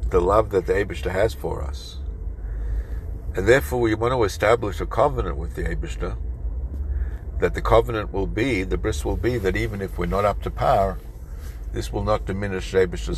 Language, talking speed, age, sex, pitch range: English, 185 wpm, 60-79, male, 75-100 Hz